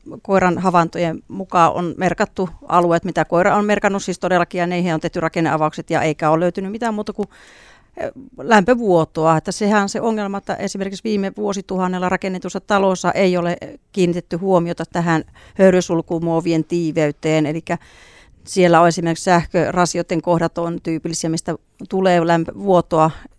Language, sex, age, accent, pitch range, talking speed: Finnish, female, 40-59, native, 160-195 Hz, 140 wpm